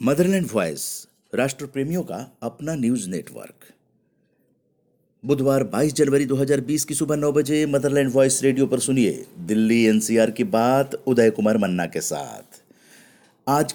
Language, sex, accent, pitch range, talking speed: Hindi, male, native, 110-145 Hz, 130 wpm